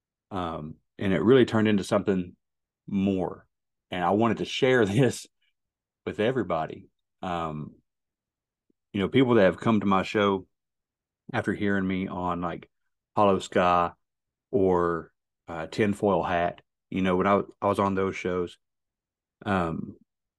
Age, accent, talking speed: 40-59, American, 140 wpm